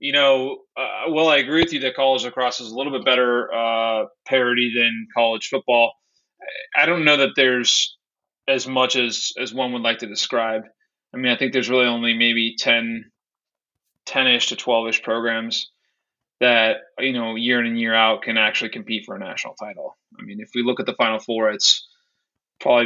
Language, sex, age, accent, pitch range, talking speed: English, male, 20-39, American, 115-135 Hz, 195 wpm